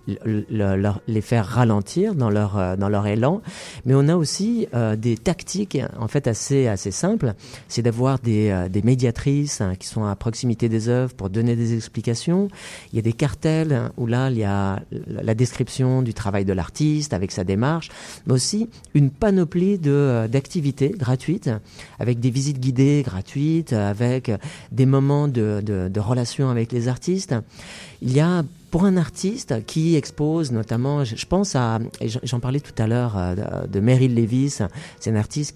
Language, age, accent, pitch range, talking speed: French, 40-59, French, 115-150 Hz, 175 wpm